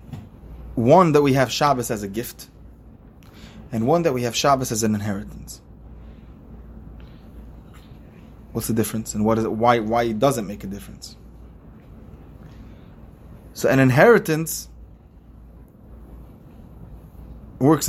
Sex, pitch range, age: male, 105-130 Hz, 20-39